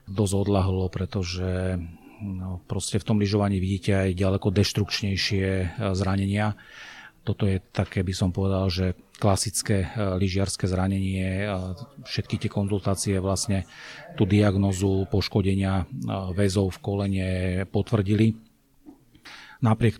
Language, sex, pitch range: Slovak, male, 95-105 Hz